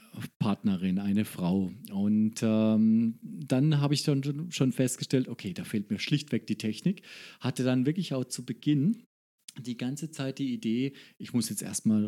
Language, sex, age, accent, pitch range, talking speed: German, male, 40-59, German, 110-150 Hz, 160 wpm